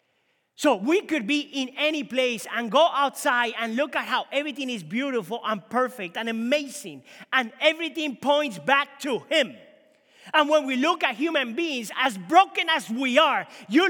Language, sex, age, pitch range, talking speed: English, male, 30-49, 235-300 Hz, 175 wpm